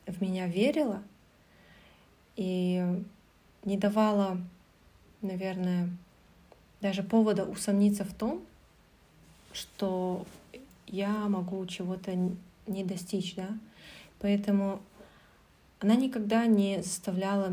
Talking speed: 80 wpm